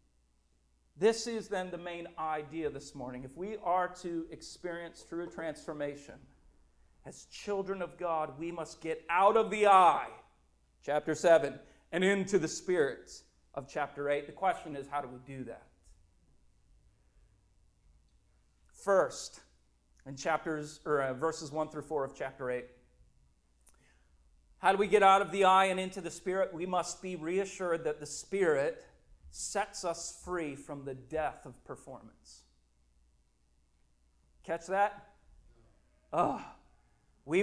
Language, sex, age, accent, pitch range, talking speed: English, male, 40-59, American, 125-195 Hz, 135 wpm